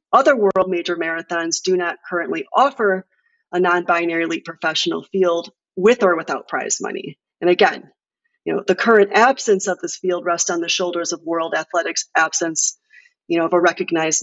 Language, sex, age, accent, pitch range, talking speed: English, female, 30-49, American, 170-200 Hz, 175 wpm